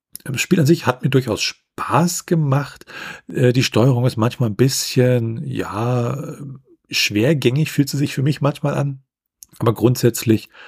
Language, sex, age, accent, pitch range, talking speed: German, male, 40-59, German, 95-140 Hz, 145 wpm